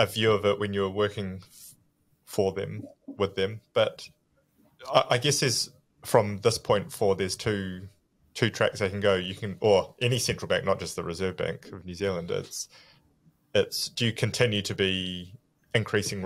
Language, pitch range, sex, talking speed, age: English, 95-110 Hz, male, 175 wpm, 20-39